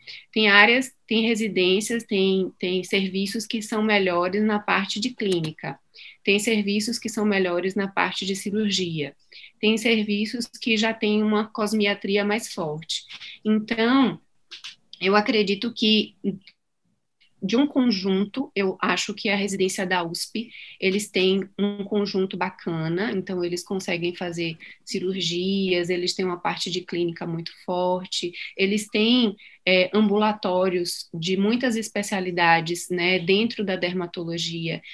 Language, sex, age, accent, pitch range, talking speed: Portuguese, female, 20-39, Brazilian, 180-210 Hz, 125 wpm